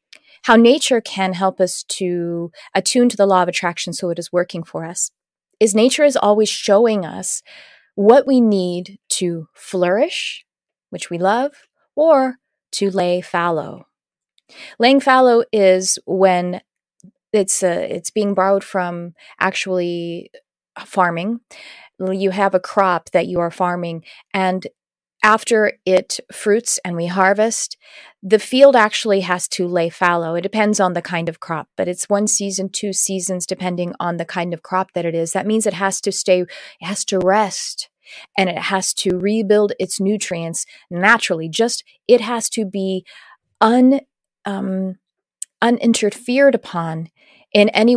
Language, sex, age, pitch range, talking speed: English, female, 30-49, 180-215 Hz, 150 wpm